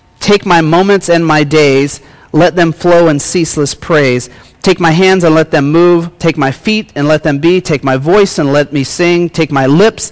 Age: 30-49